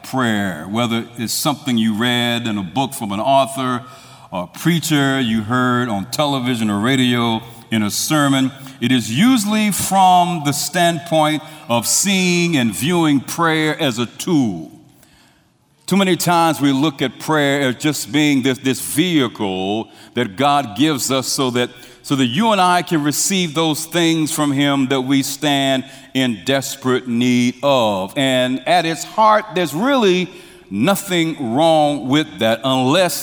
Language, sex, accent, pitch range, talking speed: English, male, American, 125-160 Hz, 155 wpm